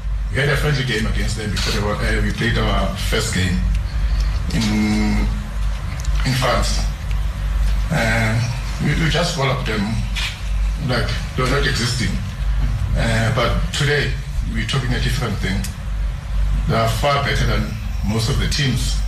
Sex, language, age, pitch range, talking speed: male, English, 50-69, 105-130 Hz, 140 wpm